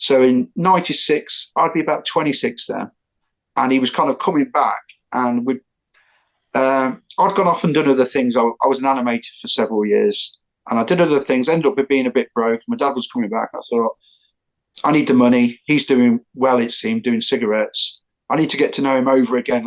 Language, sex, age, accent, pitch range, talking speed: English, male, 40-59, British, 120-155 Hz, 215 wpm